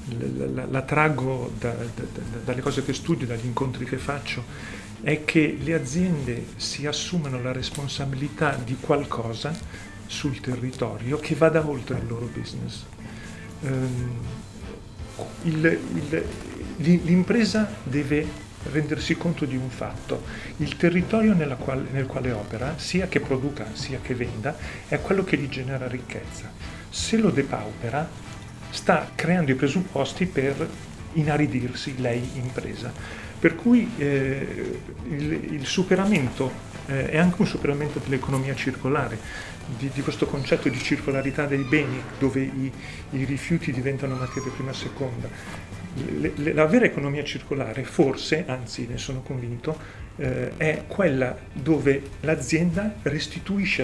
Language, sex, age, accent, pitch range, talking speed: Italian, male, 40-59, native, 120-150 Hz, 125 wpm